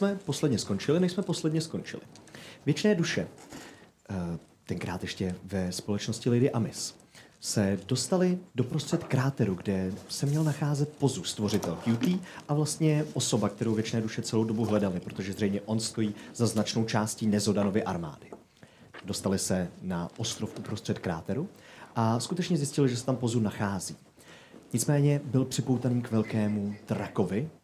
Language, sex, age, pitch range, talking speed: Czech, male, 30-49, 100-145 Hz, 140 wpm